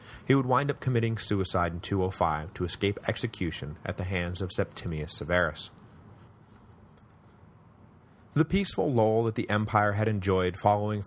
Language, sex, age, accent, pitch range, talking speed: English, male, 30-49, American, 90-110 Hz, 140 wpm